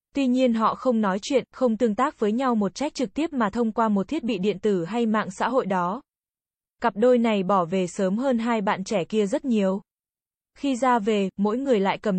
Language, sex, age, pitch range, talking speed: Vietnamese, female, 20-39, 200-245 Hz, 235 wpm